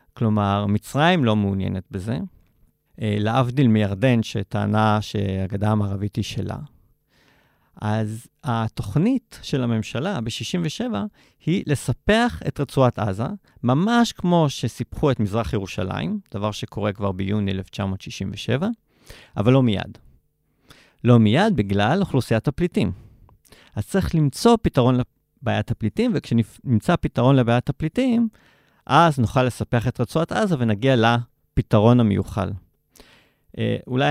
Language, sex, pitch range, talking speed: Hebrew, male, 105-145 Hz, 105 wpm